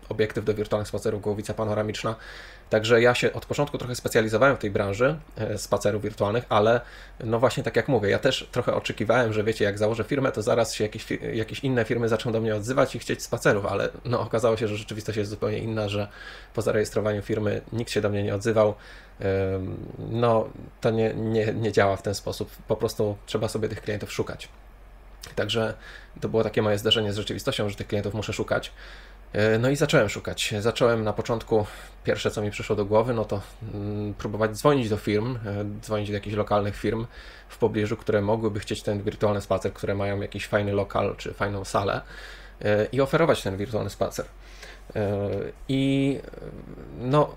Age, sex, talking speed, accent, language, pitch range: 20-39, male, 180 wpm, native, Polish, 105-115 Hz